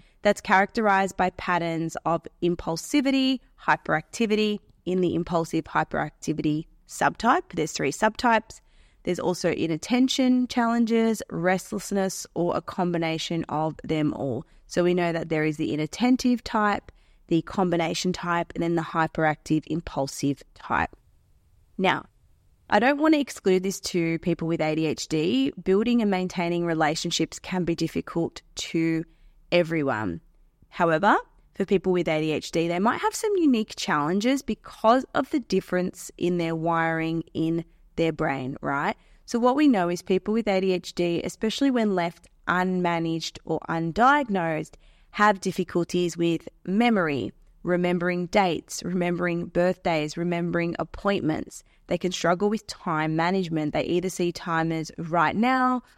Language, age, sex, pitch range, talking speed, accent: English, 20-39, female, 165-200 Hz, 130 wpm, Australian